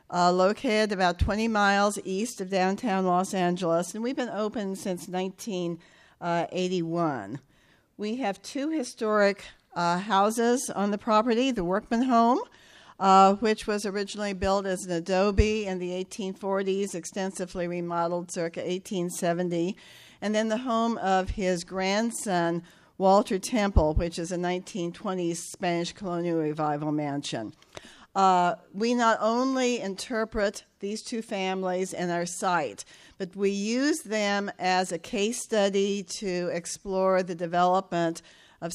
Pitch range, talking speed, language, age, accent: 175-205 Hz, 130 wpm, English, 50-69, American